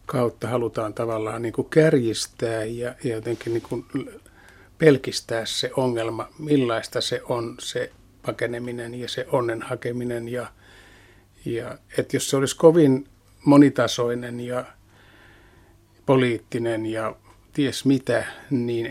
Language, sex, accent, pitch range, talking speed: Finnish, male, native, 115-130 Hz, 110 wpm